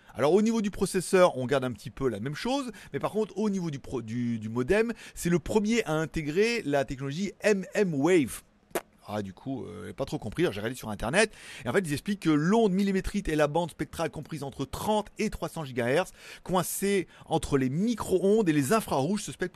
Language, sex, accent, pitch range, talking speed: French, male, French, 130-190 Hz, 220 wpm